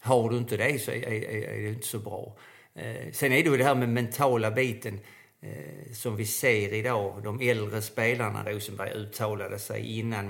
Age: 50-69